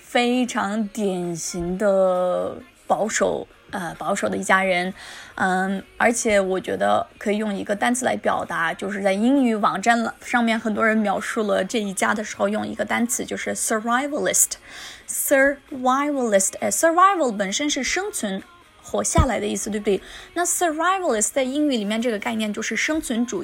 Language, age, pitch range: Chinese, 20-39, 210-285 Hz